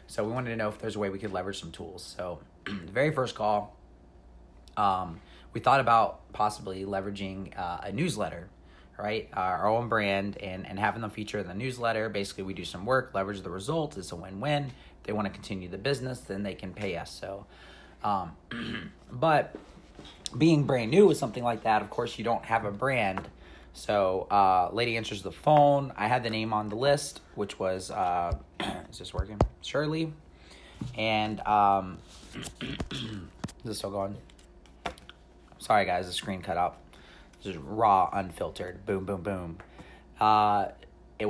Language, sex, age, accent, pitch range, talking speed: English, male, 30-49, American, 95-115 Hz, 175 wpm